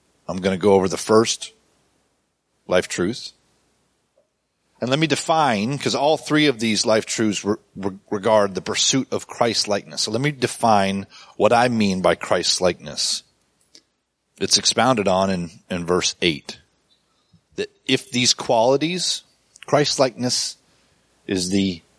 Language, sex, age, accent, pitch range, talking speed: English, male, 40-59, American, 105-150 Hz, 140 wpm